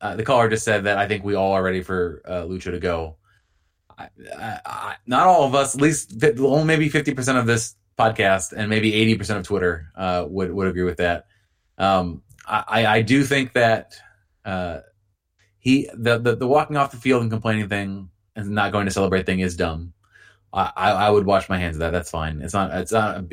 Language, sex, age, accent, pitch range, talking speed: English, male, 30-49, American, 90-110 Hz, 225 wpm